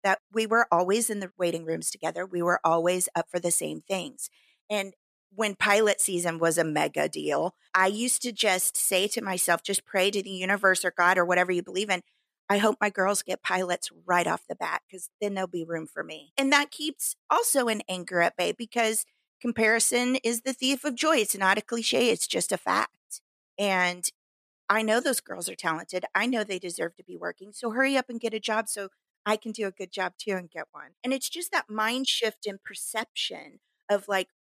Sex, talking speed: female, 220 wpm